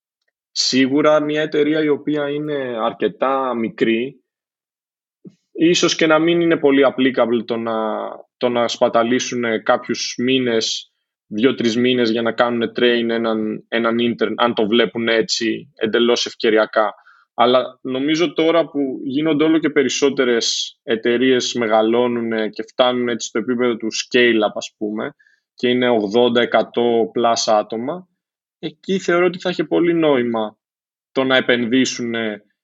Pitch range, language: 115-150 Hz, Greek